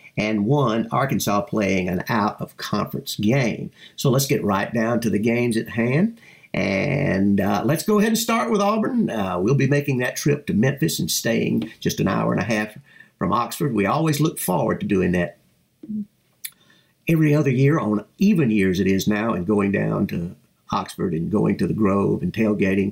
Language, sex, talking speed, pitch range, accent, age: English, male, 190 wpm, 100-145 Hz, American, 50-69